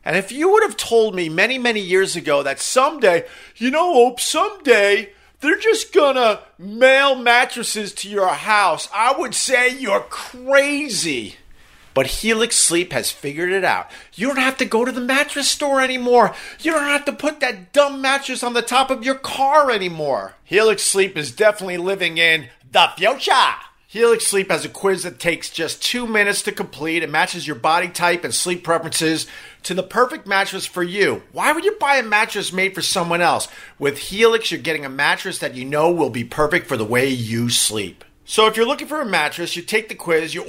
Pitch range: 165-245 Hz